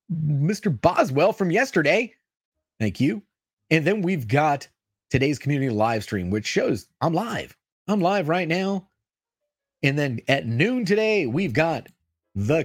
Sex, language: male, English